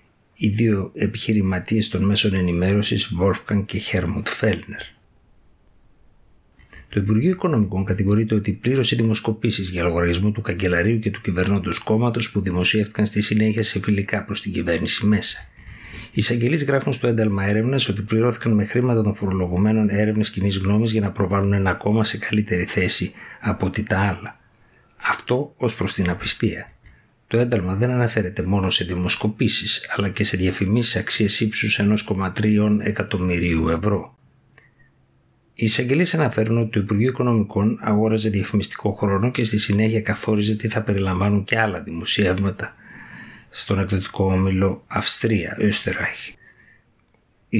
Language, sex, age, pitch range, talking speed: Greek, male, 50-69, 95-110 Hz, 135 wpm